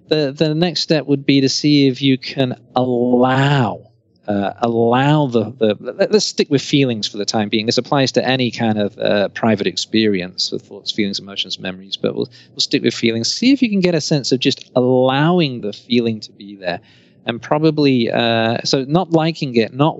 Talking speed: 200 wpm